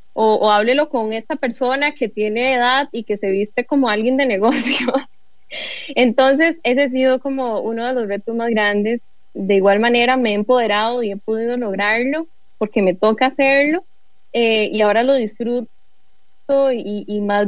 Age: 10-29